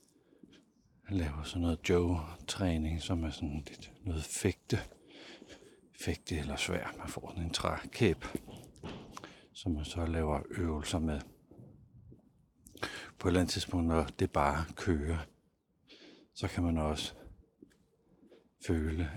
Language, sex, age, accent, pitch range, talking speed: Danish, male, 60-79, native, 80-95 Hz, 120 wpm